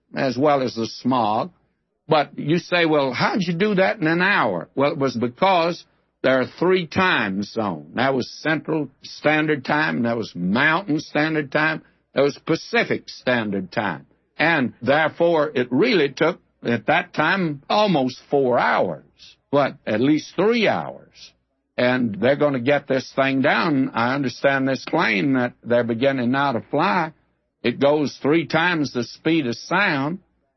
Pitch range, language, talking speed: 125-170 Hz, English, 160 wpm